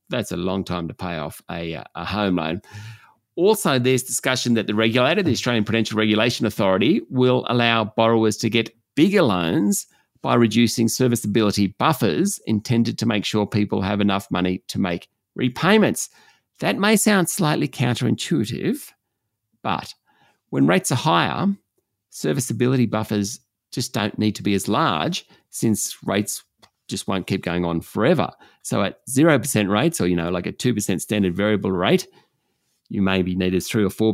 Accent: Australian